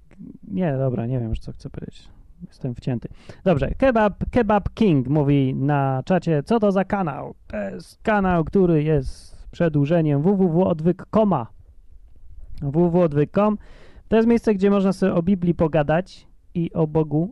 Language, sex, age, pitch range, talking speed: Polish, male, 30-49, 140-175 Hz, 140 wpm